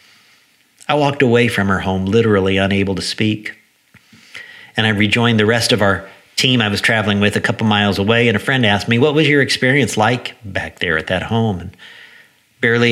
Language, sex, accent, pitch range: English, male, American, 100-120 Hz